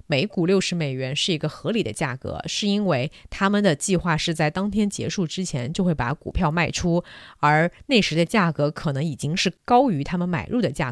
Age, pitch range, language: 30-49, 145-195 Hz, Chinese